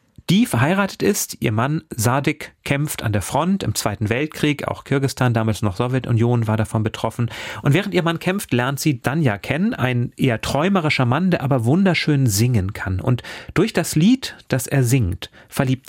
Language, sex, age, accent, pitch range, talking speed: German, male, 40-59, German, 115-150 Hz, 180 wpm